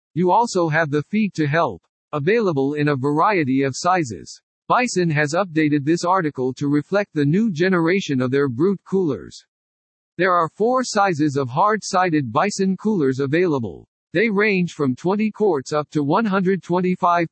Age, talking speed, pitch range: 50-69, 150 wpm, 145-195 Hz